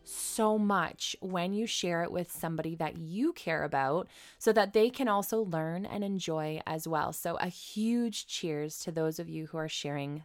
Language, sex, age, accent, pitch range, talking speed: English, female, 20-39, American, 160-220 Hz, 195 wpm